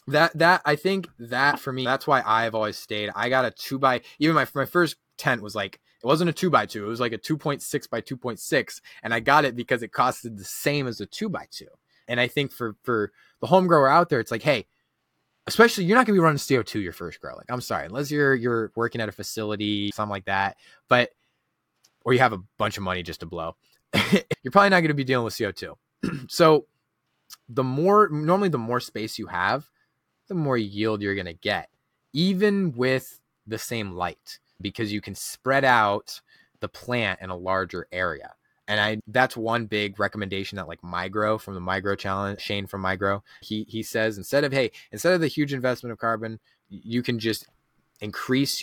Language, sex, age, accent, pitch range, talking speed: English, male, 20-39, American, 105-140 Hz, 215 wpm